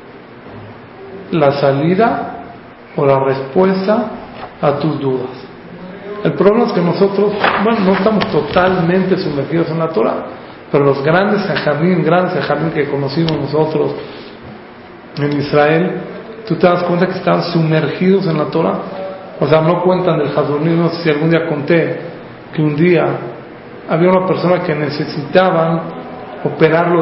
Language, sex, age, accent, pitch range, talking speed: English, male, 40-59, Mexican, 155-190 Hz, 140 wpm